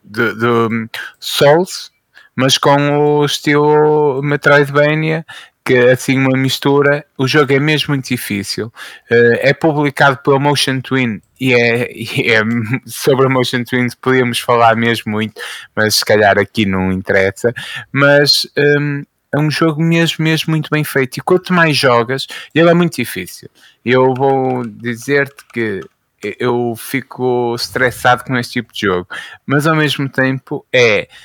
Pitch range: 120-150 Hz